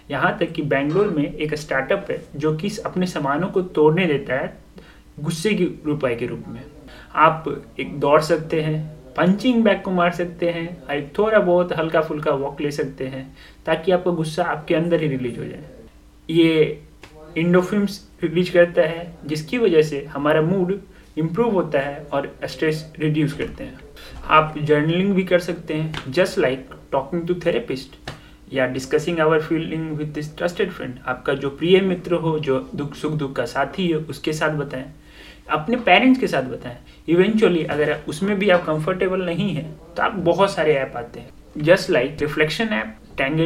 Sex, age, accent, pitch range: male, 30-49, native, 145-175 Hz